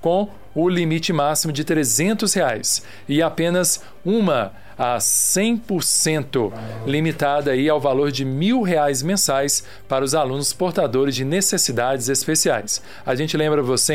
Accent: Brazilian